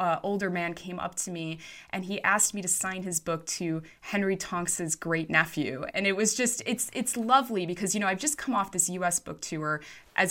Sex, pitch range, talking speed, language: female, 175-215 Hz, 225 wpm, English